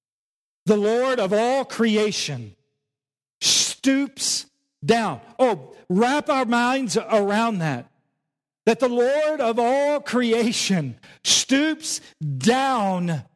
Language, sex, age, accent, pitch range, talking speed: English, male, 50-69, American, 190-250 Hz, 95 wpm